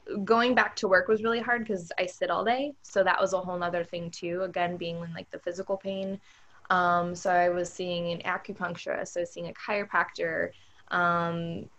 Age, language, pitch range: 20-39, English, 170-195 Hz